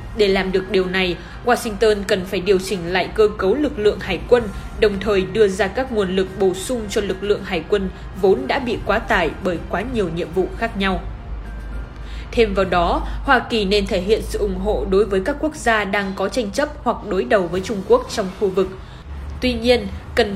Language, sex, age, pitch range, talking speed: Vietnamese, female, 20-39, 195-235 Hz, 220 wpm